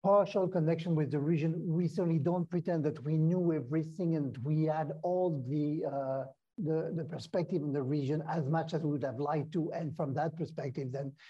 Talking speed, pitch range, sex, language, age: 200 wpm, 145-175 Hz, male, English, 60-79